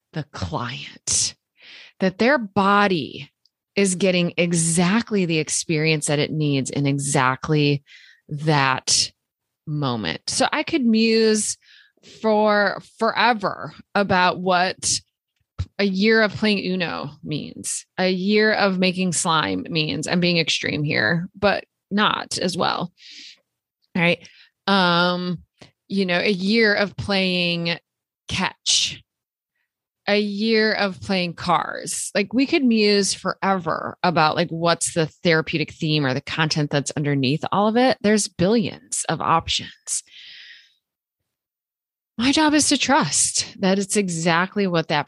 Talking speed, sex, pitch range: 120 wpm, female, 150-200 Hz